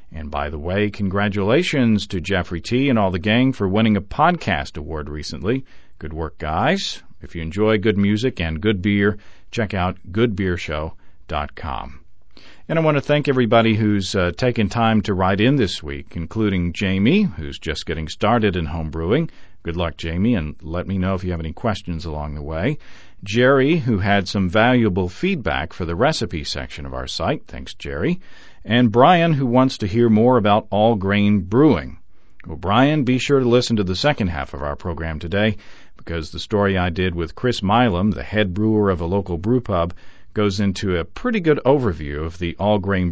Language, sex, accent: English, male, American